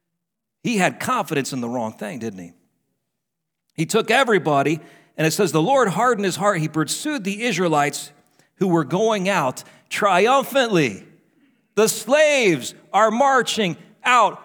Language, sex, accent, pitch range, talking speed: English, male, American, 160-250 Hz, 140 wpm